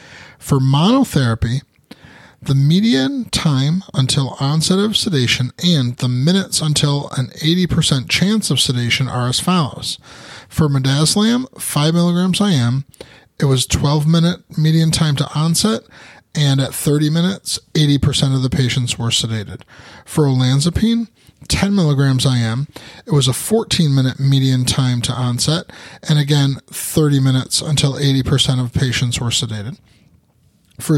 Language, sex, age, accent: English, male, 30-49, American